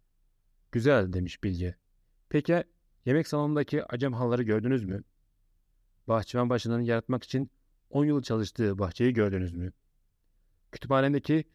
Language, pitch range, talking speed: Turkish, 95-130 Hz, 110 wpm